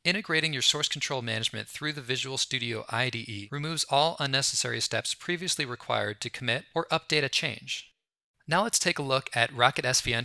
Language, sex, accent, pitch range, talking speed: English, male, American, 115-150 Hz, 175 wpm